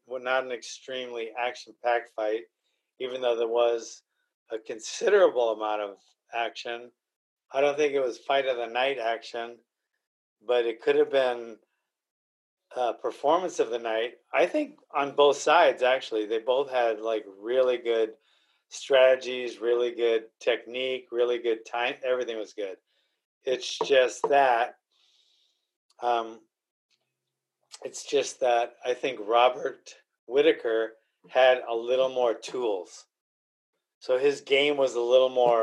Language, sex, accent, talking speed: English, male, American, 135 wpm